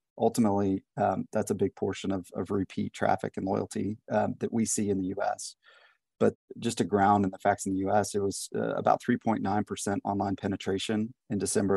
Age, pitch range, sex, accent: 30-49, 100-110 Hz, male, American